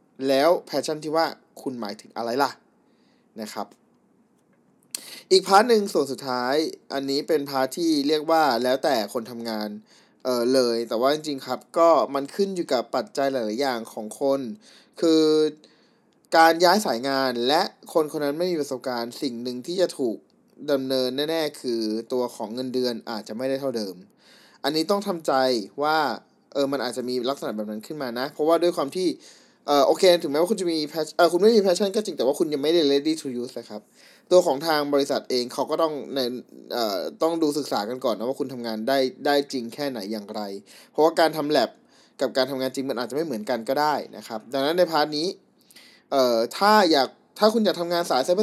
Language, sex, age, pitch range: Thai, male, 20-39, 125-165 Hz